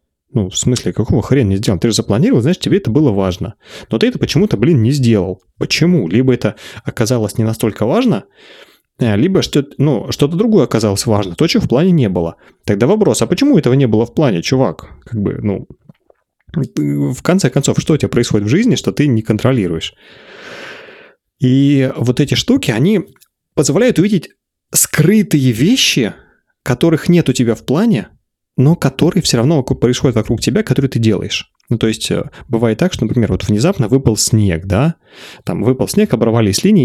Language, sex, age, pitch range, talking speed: Russian, male, 30-49, 110-145 Hz, 180 wpm